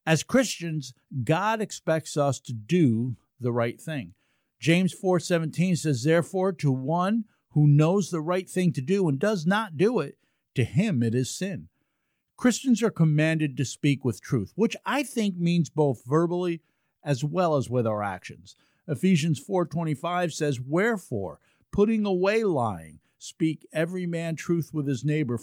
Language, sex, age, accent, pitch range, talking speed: English, male, 50-69, American, 135-185 Hz, 155 wpm